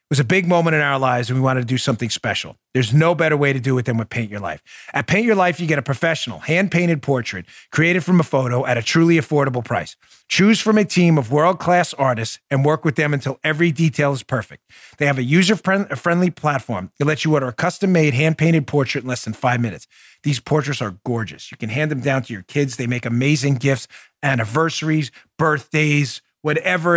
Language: English